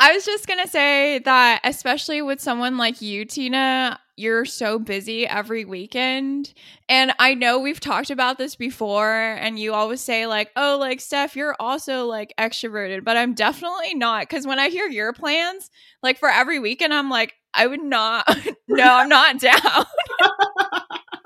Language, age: English, 10-29